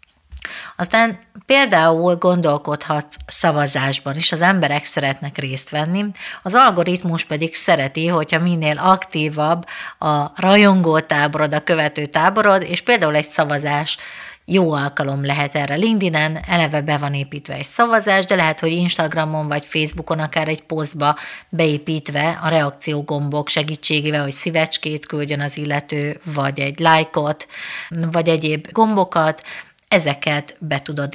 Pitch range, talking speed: 150-175 Hz, 125 wpm